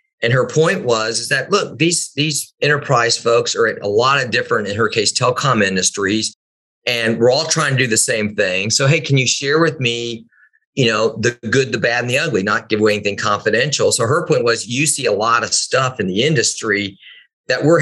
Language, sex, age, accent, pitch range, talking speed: English, male, 40-59, American, 110-155 Hz, 225 wpm